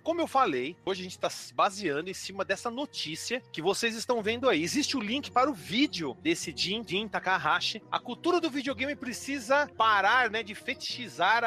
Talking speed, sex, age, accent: 190 wpm, male, 40-59, Brazilian